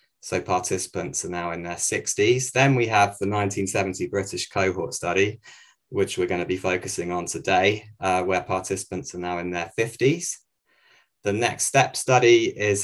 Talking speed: 170 wpm